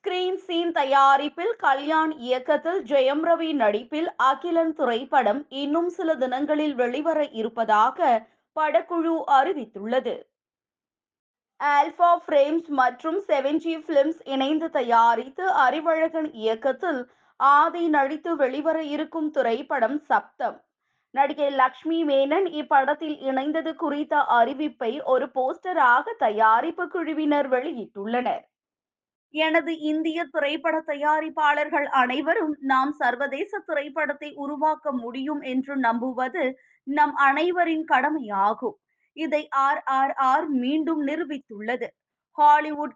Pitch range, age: 265-320 Hz, 20-39